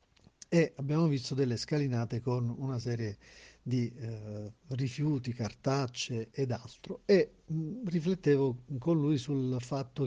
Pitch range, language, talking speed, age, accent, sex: 120-150 Hz, Italian, 125 wpm, 50-69, native, male